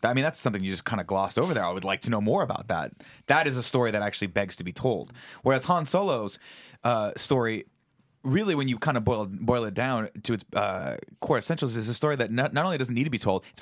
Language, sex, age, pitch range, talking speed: English, male, 30-49, 105-135 Hz, 270 wpm